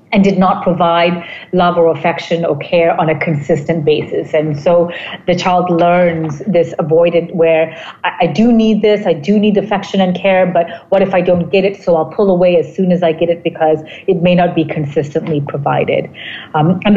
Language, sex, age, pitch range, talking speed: English, female, 40-59, 165-185 Hz, 200 wpm